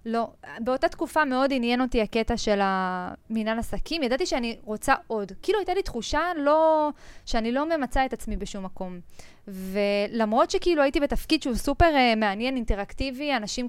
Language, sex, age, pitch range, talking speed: Hebrew, female, 20-39, 205-260 Hz, 160 wpm